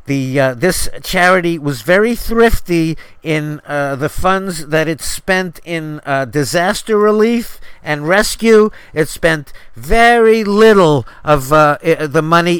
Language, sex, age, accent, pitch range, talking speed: English, male, 50-69, American, 135-180 Hz, 135 wpm